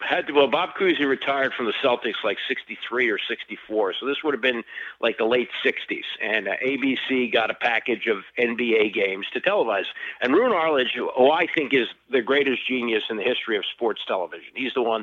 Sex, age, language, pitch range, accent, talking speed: male, 50-69, English, 120-165 Hz, American, 200 wpm